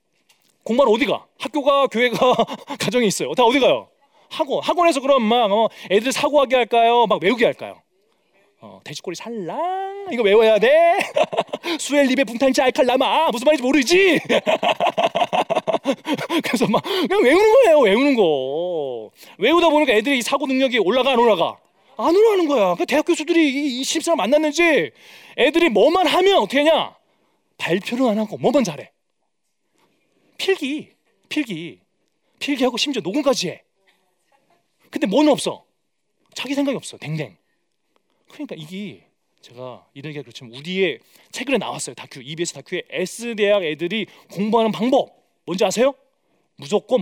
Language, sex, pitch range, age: Korean, male, 215-320 Hz, 30-49